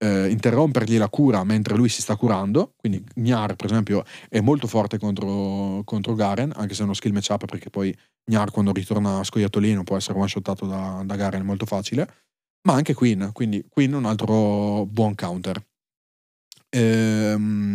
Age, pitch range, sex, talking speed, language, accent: 30-49, 105-130 Hz, male, 170 wpm, Italian, native